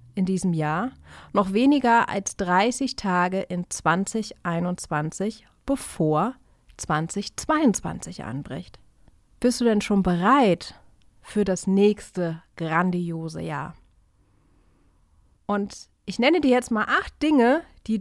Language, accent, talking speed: German, German, 105 wpm